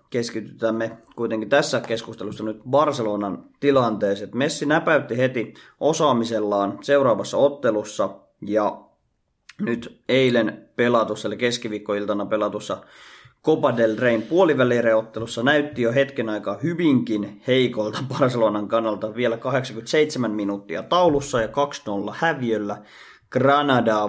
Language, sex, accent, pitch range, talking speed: Finnish, male, native, 105-135 Hz, 95 wpm